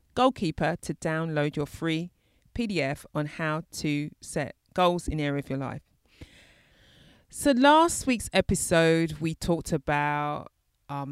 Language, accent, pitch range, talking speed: English, British, 150-170 Hz, 135 wpm